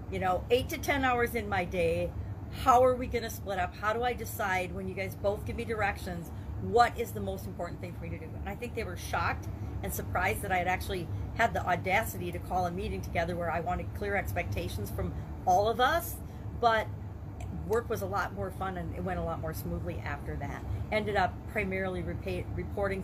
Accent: American